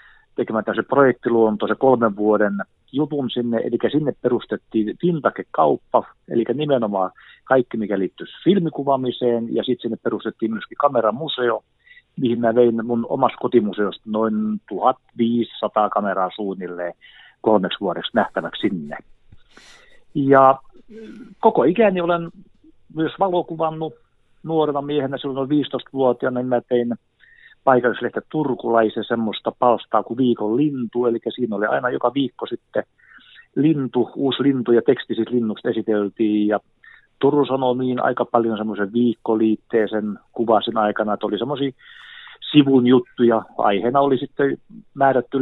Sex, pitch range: male, 115-135 Hz